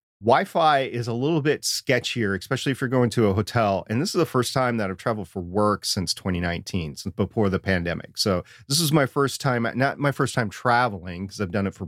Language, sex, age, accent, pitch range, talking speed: English, male, 40-59, American, 100-125 Hz, 230 wpm